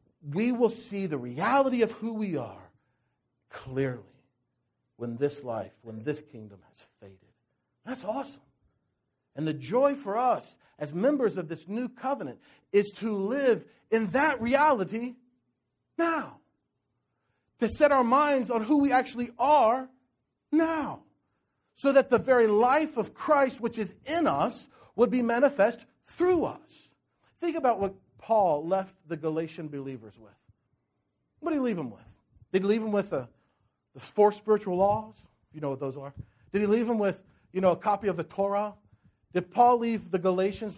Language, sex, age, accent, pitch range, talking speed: English, male, 50-69, American, 160-260 Hz, 160 wpm